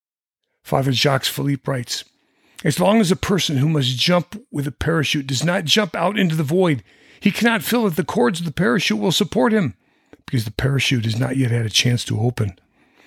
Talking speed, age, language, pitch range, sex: 205 wpm, 50-69, English, 130-180 Hz, male